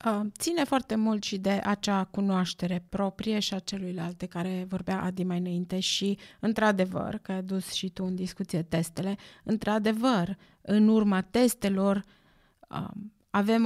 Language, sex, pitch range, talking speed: Romanian, female, 190-230 Hz, 140 wpm